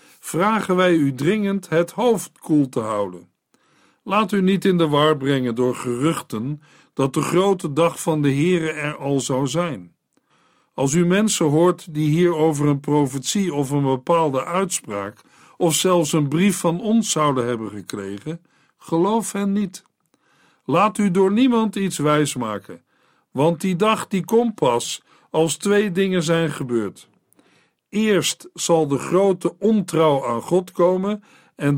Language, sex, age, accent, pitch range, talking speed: Dutch, male, 50-69, Dutch, 145-190 Hz, 150 wpm